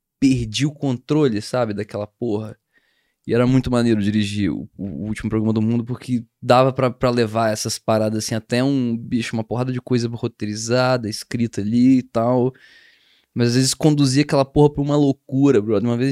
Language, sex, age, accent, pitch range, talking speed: Portuguese, male, 20-39, Brazilian, 115-140 Hz, 185 wpm